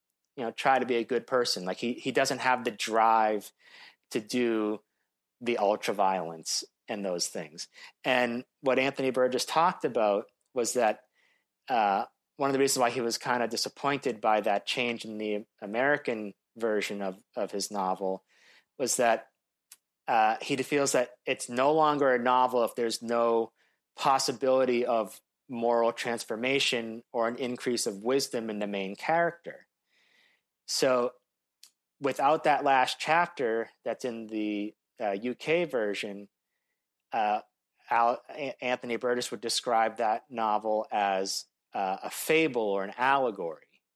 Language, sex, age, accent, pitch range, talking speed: English, male, 30-49, American, 105-130 Hz, 145 wpm